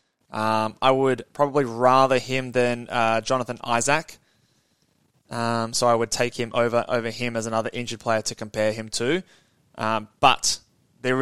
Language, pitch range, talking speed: English, 120-160 Hz, 160 wpm